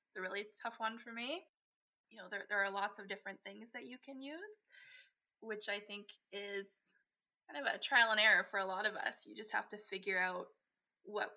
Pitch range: 195-255 Hz